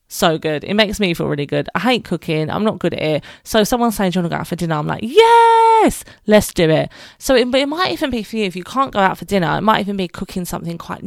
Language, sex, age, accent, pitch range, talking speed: English, female, 20-39, British, 170-215 Hz, 305 wpm